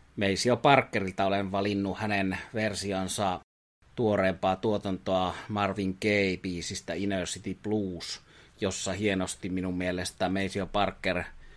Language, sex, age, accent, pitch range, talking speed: Finnish, male, 30-49, native, 95-105 Hz, 105 wpm